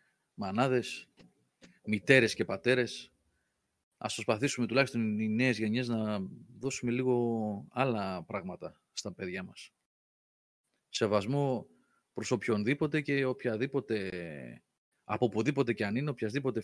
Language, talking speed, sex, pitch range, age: Greek, 105 wpm, male, 115-165 Hz, 30-49